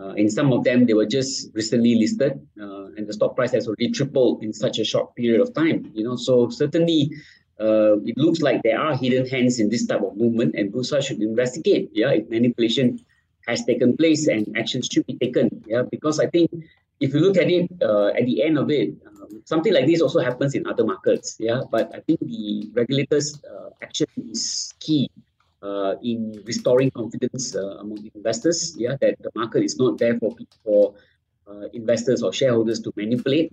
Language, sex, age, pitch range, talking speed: English, male, 30-49, 105-130 Hz, 205 wpm